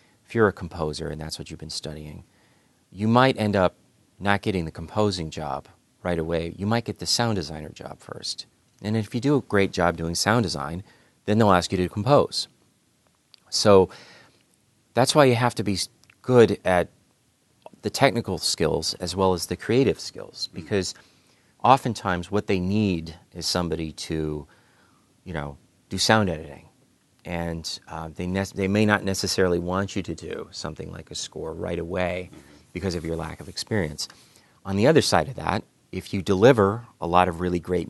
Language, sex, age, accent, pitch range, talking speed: English, male, 30-49, American, 85-105 Hz, 180 wpm